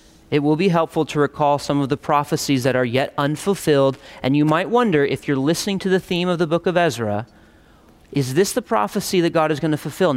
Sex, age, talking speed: male, 30-49, 230 wpm